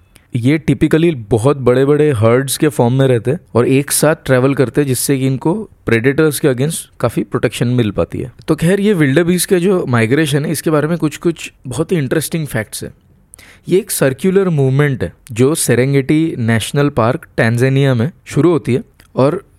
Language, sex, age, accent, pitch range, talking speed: Hindi, male, 20-39, native, 120-150 Hz, 185 wpm